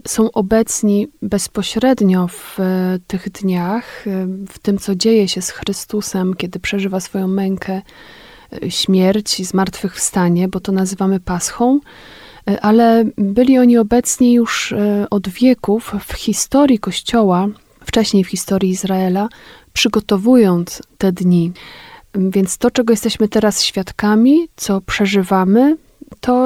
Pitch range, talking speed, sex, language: 190-225 Hz, 115 wpm, female, Polish